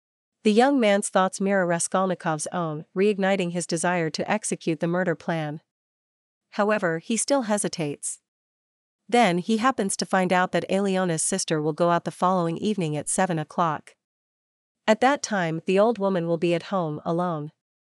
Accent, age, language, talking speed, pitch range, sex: American, 40-59, German, 160 wpm, 170-210 Hz, female